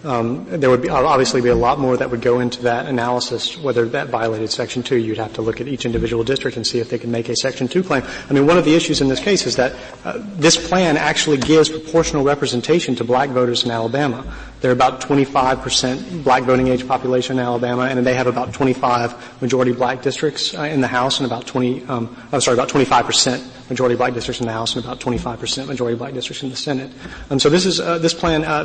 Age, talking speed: 30-49, 250 wpm